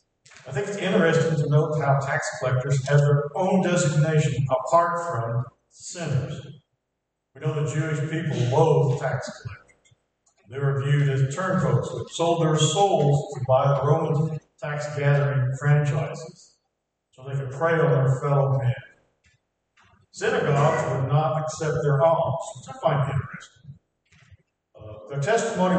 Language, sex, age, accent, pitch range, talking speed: English, male, 50-69, American, 135-160 Hz, 140 wpm